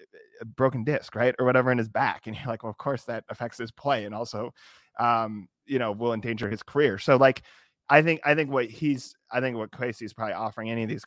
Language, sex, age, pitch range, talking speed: English, male, 20-39, 110-130 Hz, 245 wpm